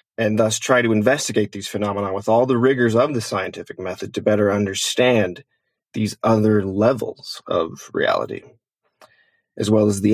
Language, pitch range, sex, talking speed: English, 100-120 Hz, male, 160 wpm